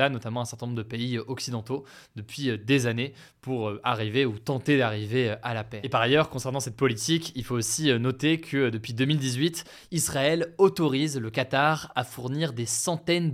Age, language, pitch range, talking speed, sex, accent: 20-39, French, 120-150 Hz, 175 wpm, male, French